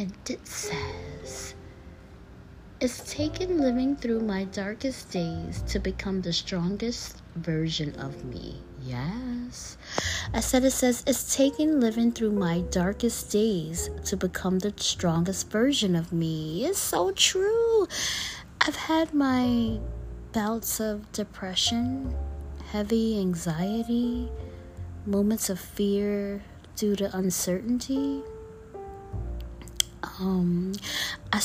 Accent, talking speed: American, 105 wpm